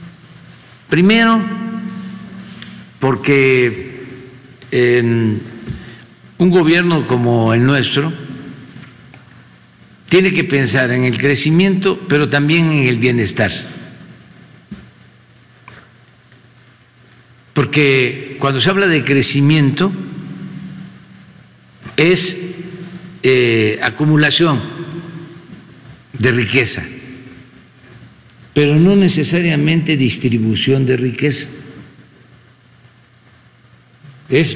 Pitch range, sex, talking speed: 125-165 Hz, male, 65 wpm